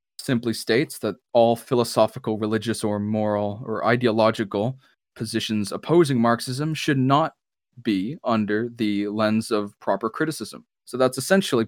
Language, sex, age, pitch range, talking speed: Italian, male, 20-39, 105-130 Hz, 130 wpm